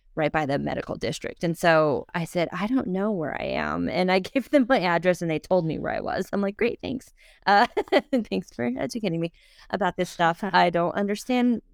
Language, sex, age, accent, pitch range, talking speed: English, female, 20-39, American, 155-195 Hz, 220 wpm